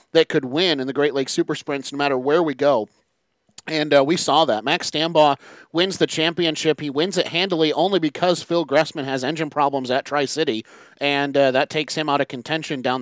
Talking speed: 210 wpm